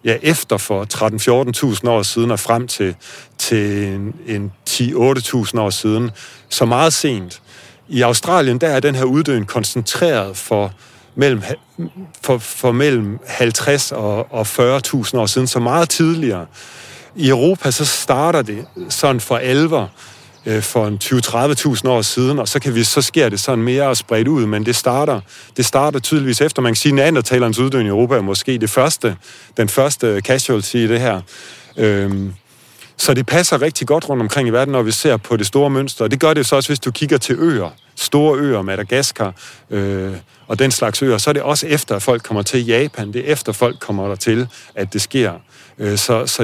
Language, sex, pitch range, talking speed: Danish, male, 110-140 Hz, 190 wpm